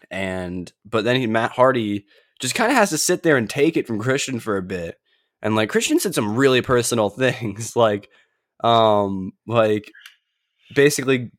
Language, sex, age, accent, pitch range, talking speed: English, male, 20-39, American, 105-125 Hz, 175 wpm